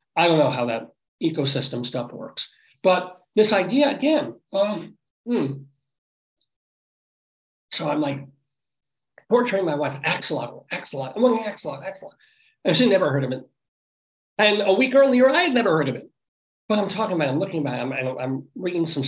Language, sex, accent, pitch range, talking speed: English, male, American, 140-200 Hz, 175 wpm